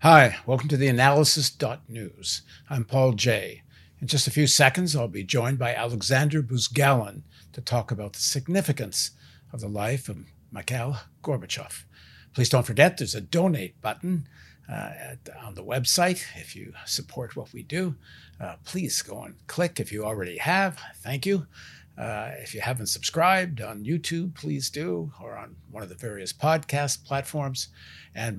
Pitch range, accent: 105-150 Hz, American